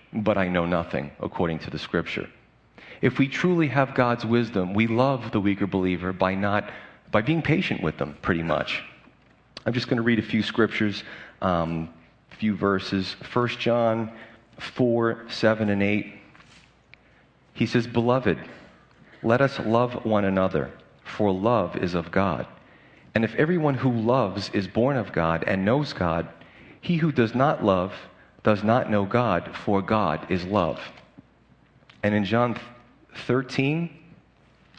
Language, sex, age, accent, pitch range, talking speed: English, male, 40-59, American, 100-125 Hz, 150 wpm